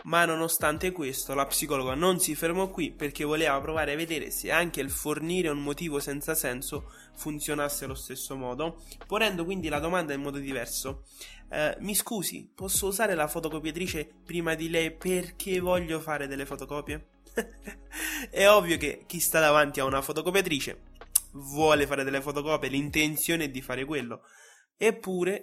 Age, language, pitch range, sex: 20-39, Italian, 140-165 Hz, male